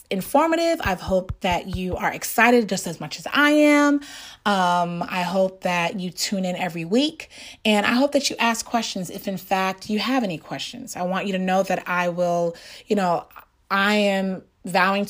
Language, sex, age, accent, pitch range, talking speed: English, female, 30-49, American, 175-220 Hz, 195 wpm